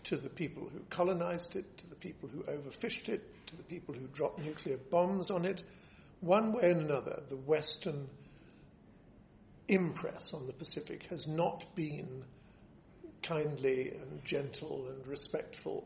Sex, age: male, 60-79